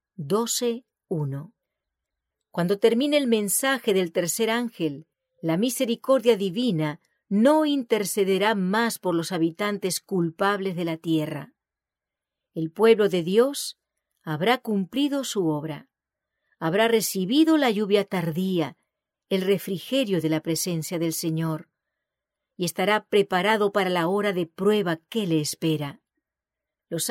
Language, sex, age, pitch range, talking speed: English, female, 40-59, 170-240 Hz, 115 wpm